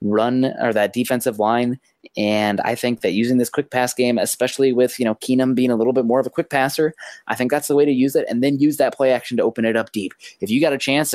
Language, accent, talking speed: English, American, 280 wpm